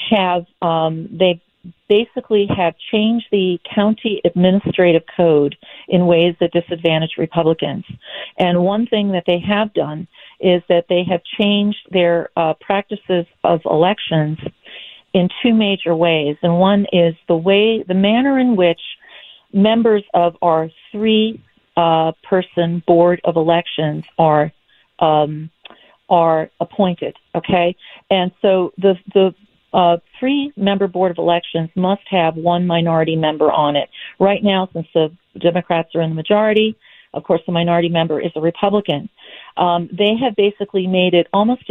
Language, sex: English, female